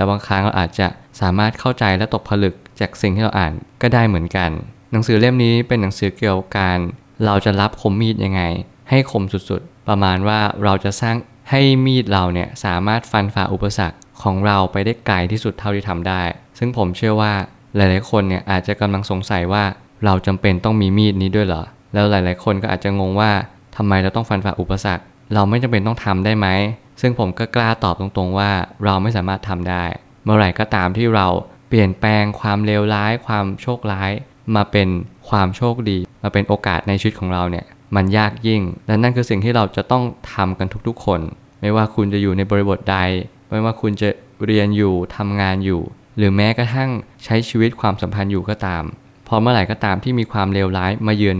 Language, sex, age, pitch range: Thai, male, 20-39, 95-110 Hz